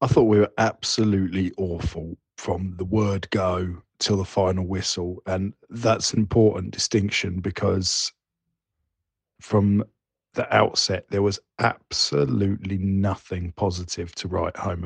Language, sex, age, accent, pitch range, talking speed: English, male, 40-59, British, 95-110 Hz, 125 wpm